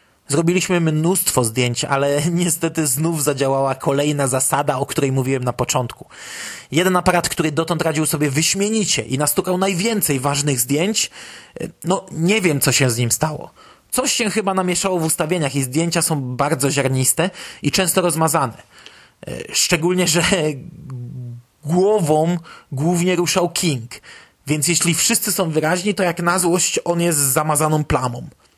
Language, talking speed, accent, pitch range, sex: Polish, 140 wpm, native, 145-185 Hz, male